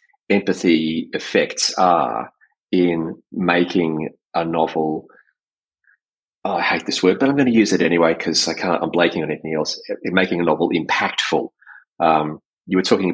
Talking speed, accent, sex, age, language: 165 wpm, Australian, male, 30-49, English